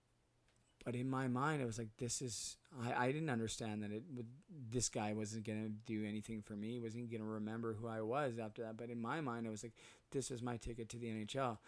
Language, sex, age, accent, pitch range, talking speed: English, male, 20-39, American, 115-125 Hz, 245 wpm